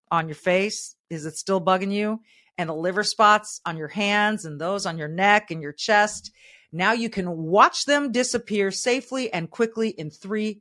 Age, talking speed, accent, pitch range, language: 40-59, 190 wpm, American, 165-225 Hz, English